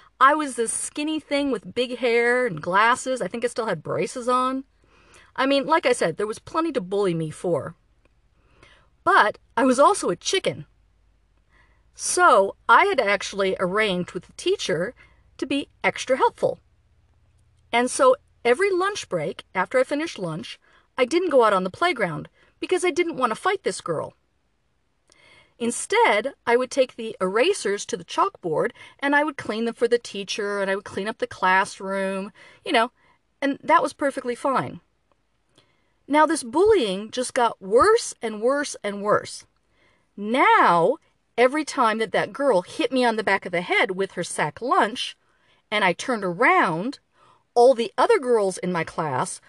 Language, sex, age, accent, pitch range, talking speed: English, female, 40-59, American, 215-325 Hz, 170 wpm